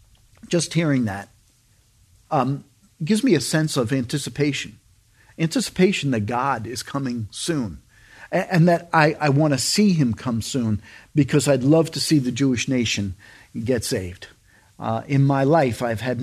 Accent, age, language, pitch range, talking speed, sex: American, 50-69, English, 110-150 Hz, 155 wpm, male